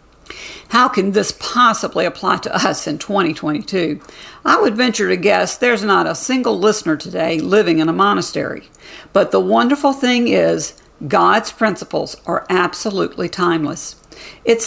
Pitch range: 170-240 Hz